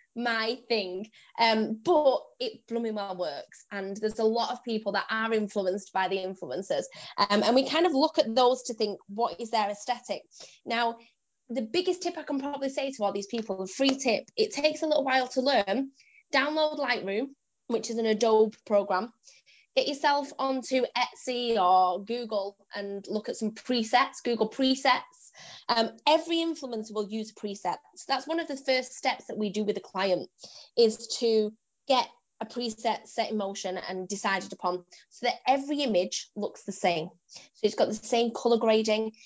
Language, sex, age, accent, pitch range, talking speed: English, female, 10-29, British, 210-265 Hz, 185 wpm